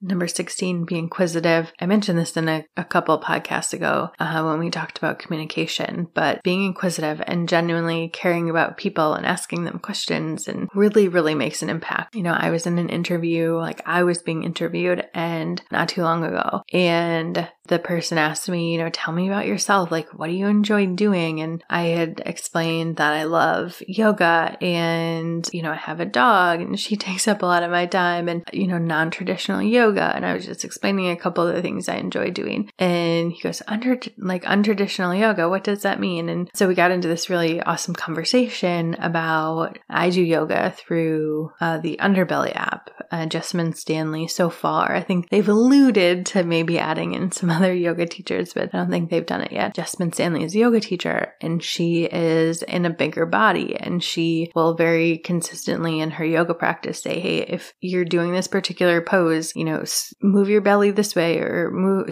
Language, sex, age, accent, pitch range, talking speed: English, female, 20-39, American, 165-185 Hz, 200 wpm